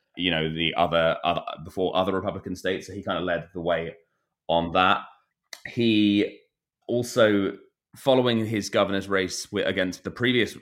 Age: 20-39